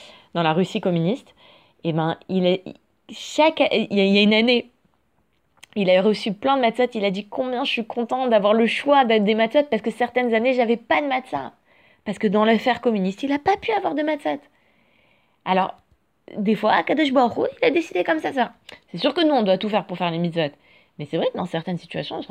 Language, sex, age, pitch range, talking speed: French, female, 20-39, 170-230 Hz, 235 wpm